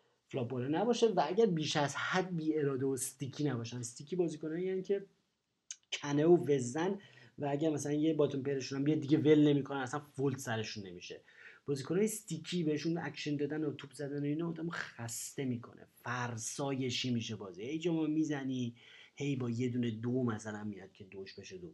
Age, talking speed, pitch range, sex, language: 30-49, 175 wpm, 125-155 Hz, male, Persian